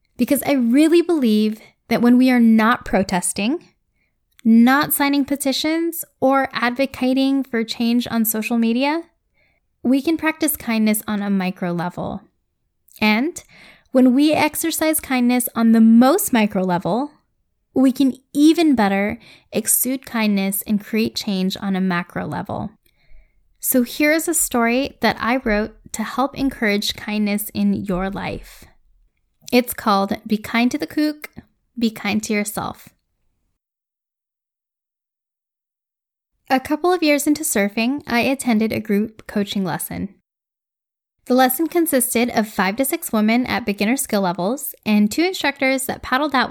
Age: 10-29